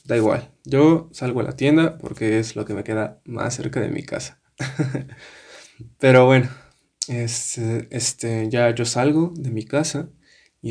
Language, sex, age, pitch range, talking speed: Spanish, male, 20-39, 115-140 Hz, 165 wpm